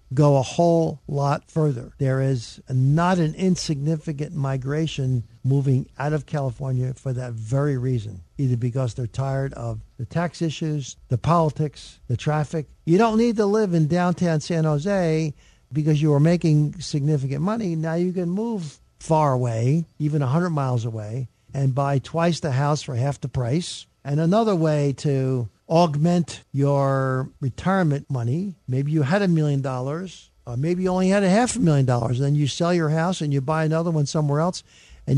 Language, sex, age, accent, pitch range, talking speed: English, male, 50-69, American, 135-175 Hz, 175 wpm